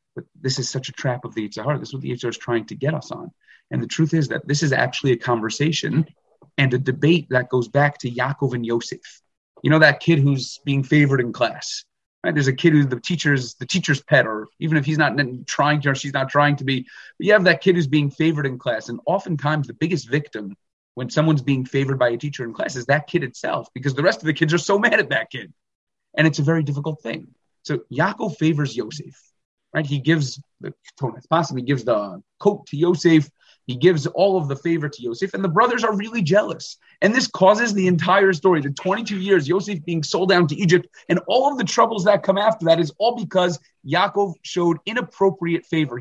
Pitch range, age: 135-175 Hz, 30-49